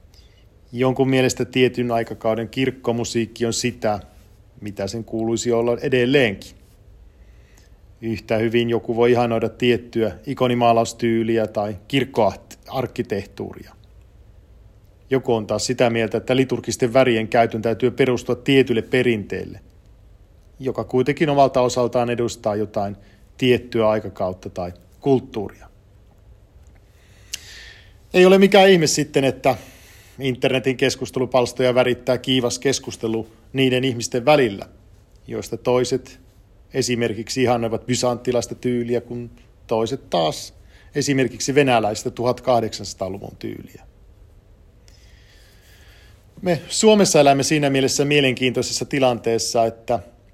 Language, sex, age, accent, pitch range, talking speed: Finnish, male, 50-69, native, 100-125 Hz, 95 wpm